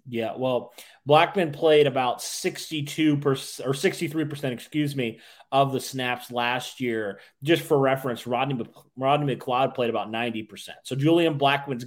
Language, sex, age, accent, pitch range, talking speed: English, male, 30-49, American, 120-145 Hz, 150 wpm